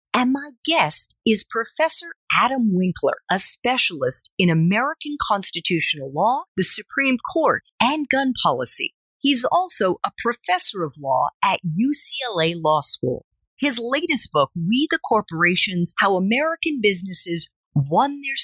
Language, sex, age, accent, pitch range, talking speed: English, female, 40-59, American, 170-270 Hz, 130 wpm